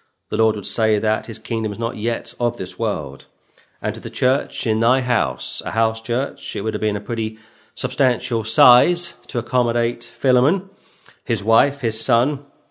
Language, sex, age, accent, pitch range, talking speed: English, male, 40-59, British, 110-125 Hz, 180 wpm